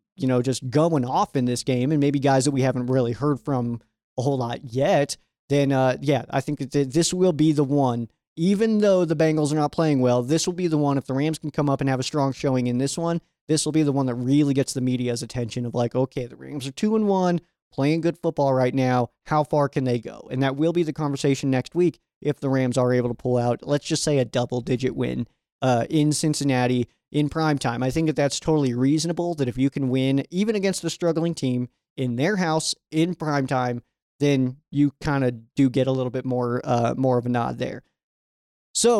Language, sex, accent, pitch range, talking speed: English, male, American, 130-160 Hz, 235 wpm